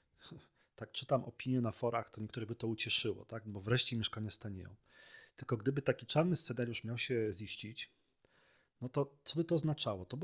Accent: native